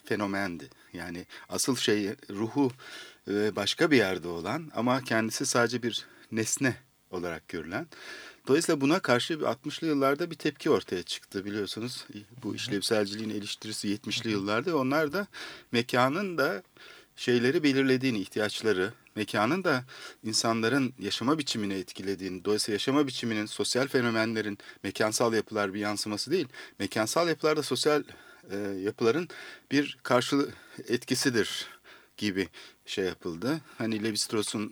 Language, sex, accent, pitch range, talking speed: Turkish, male, native, 105-125 Hz, 115 wpm